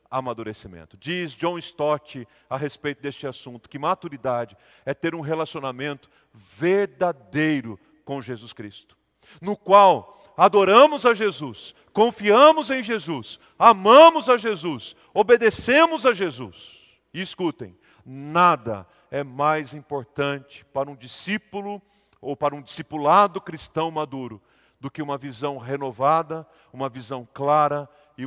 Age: 40-59